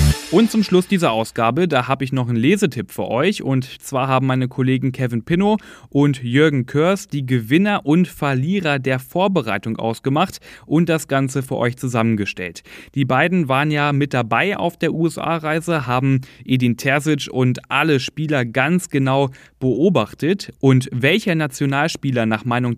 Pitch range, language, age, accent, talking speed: 120-155 Hz, German, 10-29, German, 155 wpm